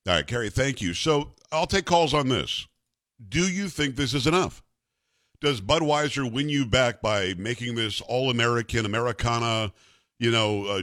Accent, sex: American, male